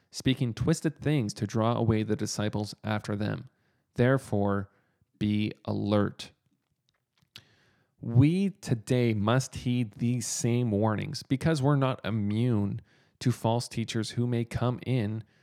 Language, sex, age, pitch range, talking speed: English, male, 40-59, 110-140 Hz, 120 wpm